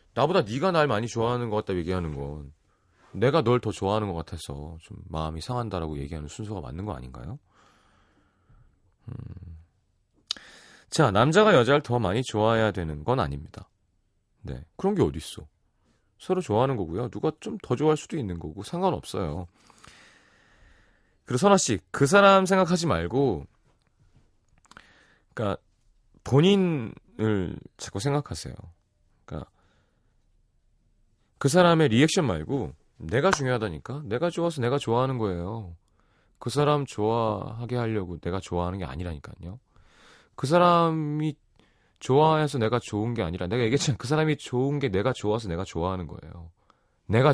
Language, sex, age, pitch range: Korean, male, 30-49, 90-135 Hz